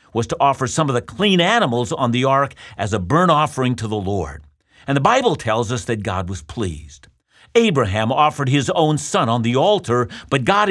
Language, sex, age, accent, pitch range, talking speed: English, male, 50-69, American, 115-165 Hz, 205 wpm